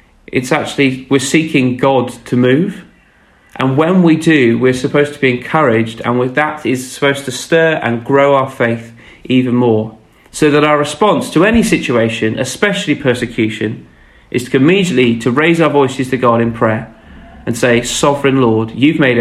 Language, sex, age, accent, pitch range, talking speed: English, male, 40-59, British, 115-145 Hz, 170 wpm